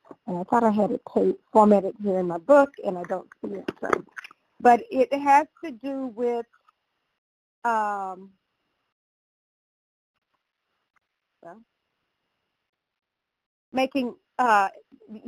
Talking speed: 100 wpm